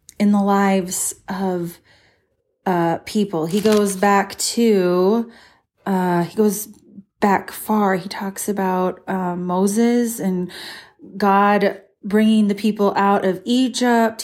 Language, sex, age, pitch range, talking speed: English, female, 30-49, 185-220 Hz, 120 wpm